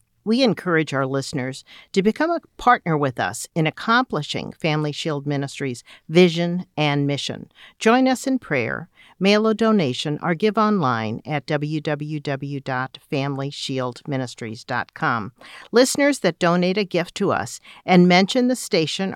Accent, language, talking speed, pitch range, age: American, English, 130 wpm, 140-185 Hz, 50-69